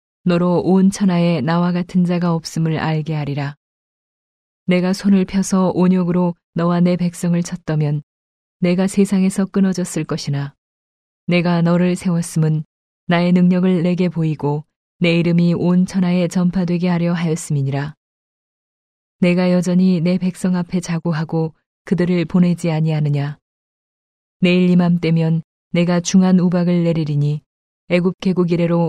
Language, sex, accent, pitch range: Korean, female, native, 160-180 Hz